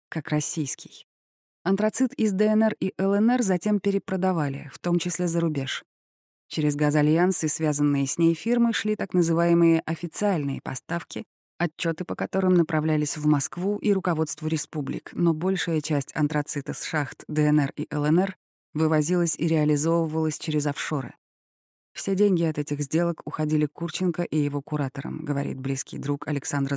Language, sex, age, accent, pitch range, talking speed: Russian, female, 20-39, native, 145-180 Hz, 140 wpm